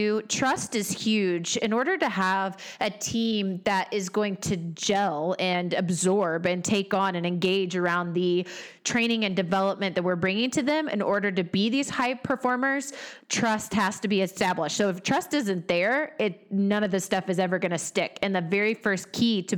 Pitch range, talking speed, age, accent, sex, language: 180-220 Hz, 195 wpm, 30-49, American, female, English